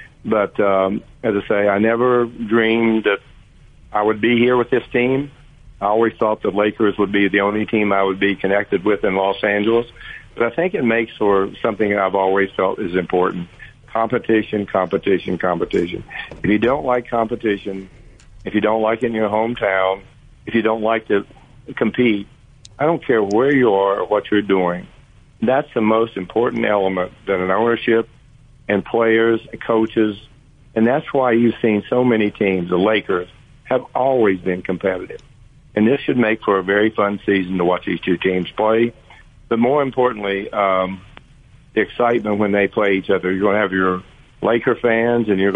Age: 50-69